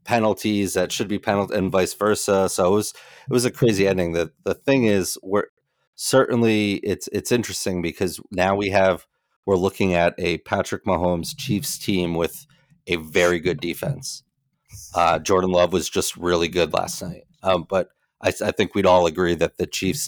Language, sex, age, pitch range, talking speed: English, male, 30-49, 90-100 Hz, 185 wpm